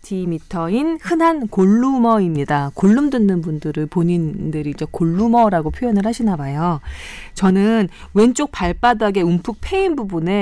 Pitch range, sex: 170-245 Hz, female